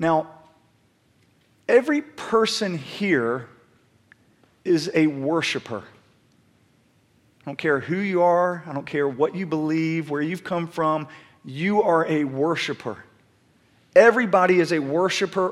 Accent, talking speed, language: American, 120 wpm, English